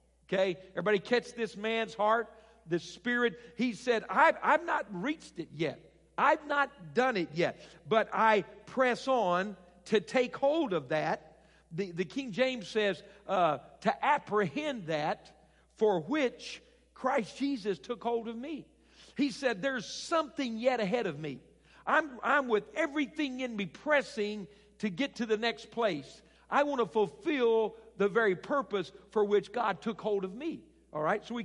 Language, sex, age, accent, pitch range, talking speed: English, male, 50-69, American, 200-255 Hz, 165 wpm